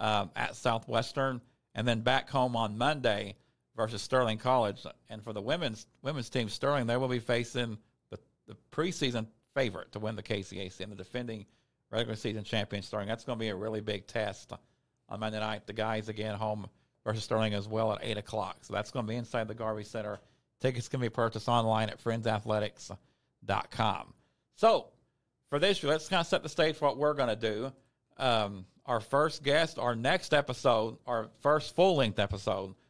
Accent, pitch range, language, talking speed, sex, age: American, 110-130 Hz, English, 185 wpm, male, 50-69